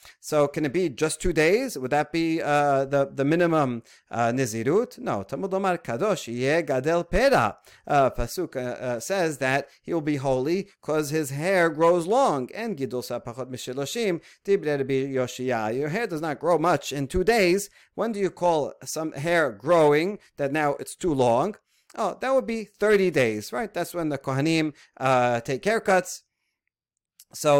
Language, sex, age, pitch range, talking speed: English, male, 40-59, 130-180 Hz, 160 wpm